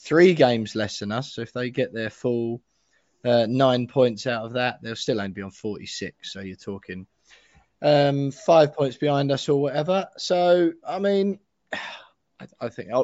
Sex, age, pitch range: male, 20-39, 115-145 Hz